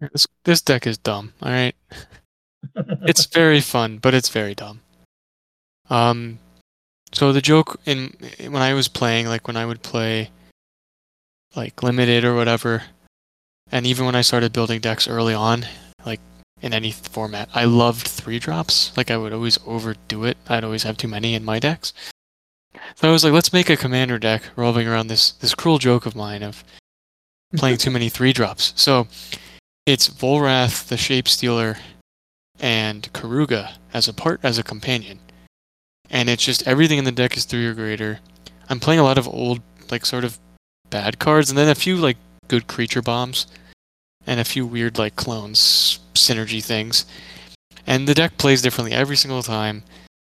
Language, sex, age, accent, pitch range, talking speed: English, male, 20-39, American, 105-130 Hz, 175 wpm